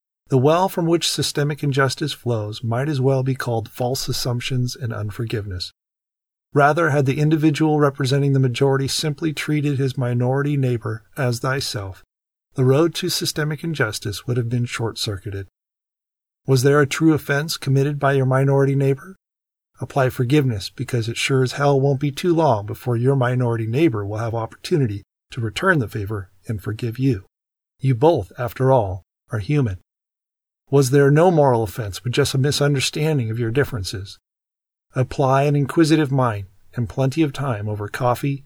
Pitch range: 115-145 Hz